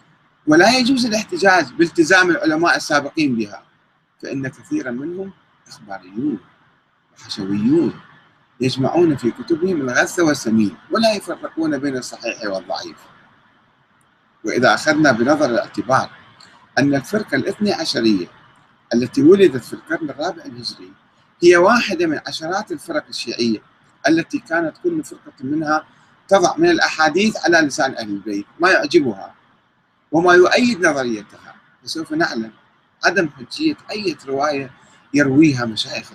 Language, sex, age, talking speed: Arabic, male, 40-59, 110 wpm